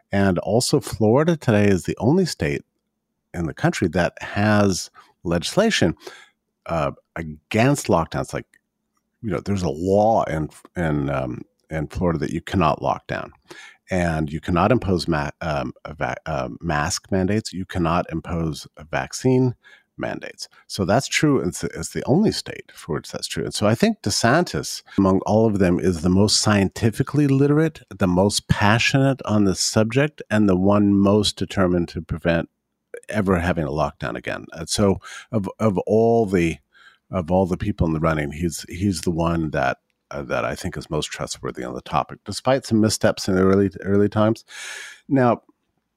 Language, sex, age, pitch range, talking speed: English, male, 50-69, 85-115 Hz, 170 wpm